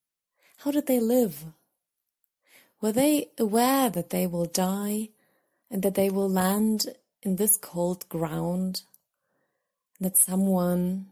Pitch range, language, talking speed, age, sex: 165-200 Hz, English, 120 wpm, 30-49, female